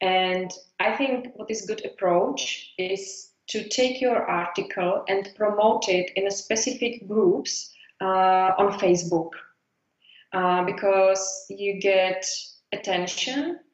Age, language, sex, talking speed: 20-39, English, female, 120 wpm